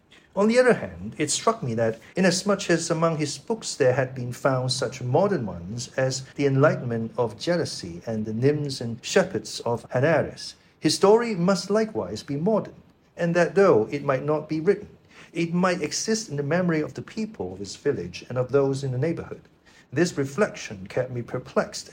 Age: 50-69